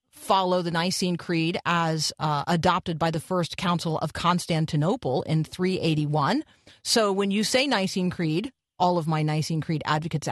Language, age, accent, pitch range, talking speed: English, 40-59, American, 150-185 Hz, 155 wpm